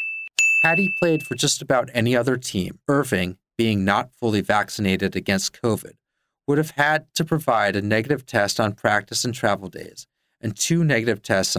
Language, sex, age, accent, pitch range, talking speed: English, male, 30-49, American, 110-145 Hz, 170 wpm